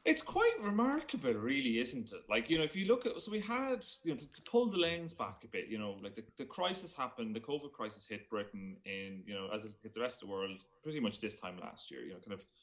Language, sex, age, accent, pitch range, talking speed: English, male, 30-49, British, 110-180 Hz, 280 wpm